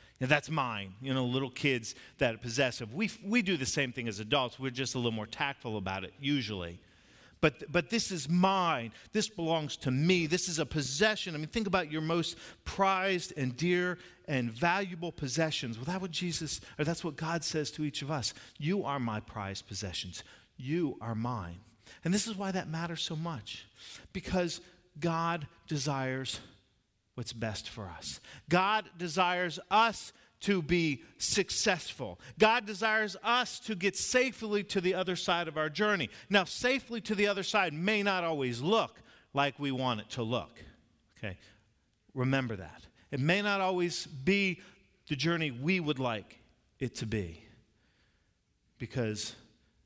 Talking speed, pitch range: 170 wpm, 120-180 Hz